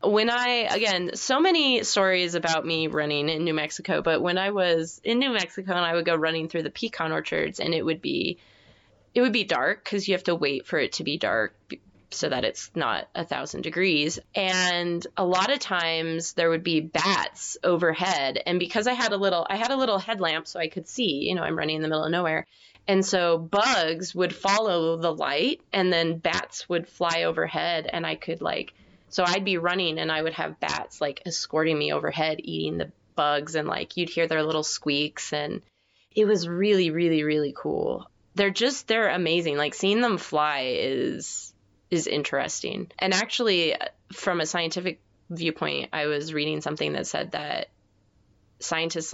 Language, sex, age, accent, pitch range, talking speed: English, female, 20-39, American, 150-185 Hz, 195 wpm